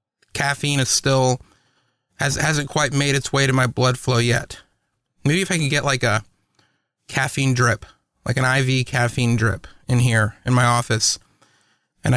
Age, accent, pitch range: 30-49, American, 120-140 Hz